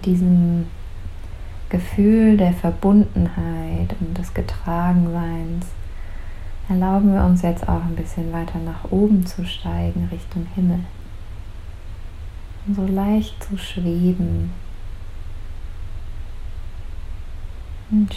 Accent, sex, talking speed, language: German, female, 90 wpm, German